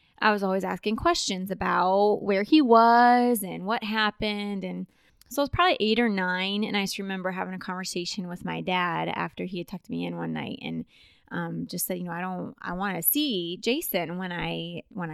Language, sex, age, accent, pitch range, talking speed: English, female, 20-39, American, 175-215 Hz, 215 wpm